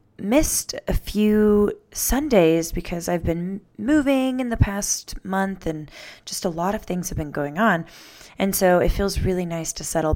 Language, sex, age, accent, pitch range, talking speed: English, female, 20-39, American, 160-205 Hz, 175 wpm